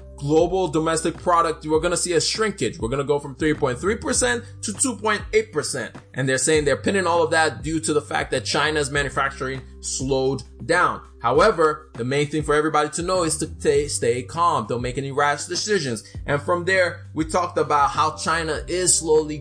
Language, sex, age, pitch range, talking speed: English, male, 20-39, 120-160 Hz, 200 wpm